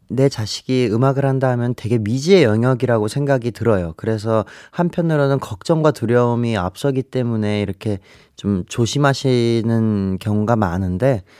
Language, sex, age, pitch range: Korean, male, 30-49, 110-150 Hz